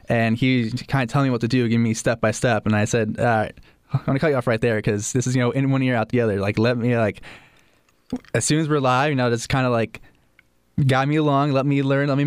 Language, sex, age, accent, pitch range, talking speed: English, male, 10-29, American, 110-135 Hz, 300 wpm